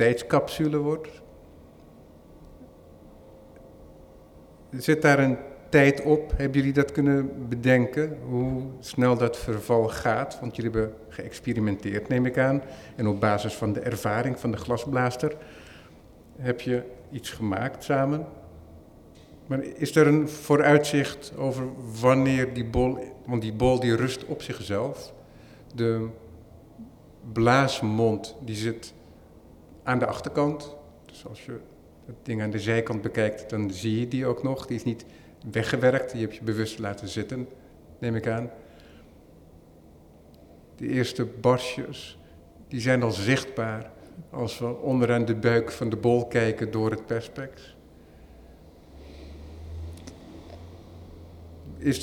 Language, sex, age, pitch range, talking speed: Dutch, male, 50-69, 95-130 Hz, 125 wpm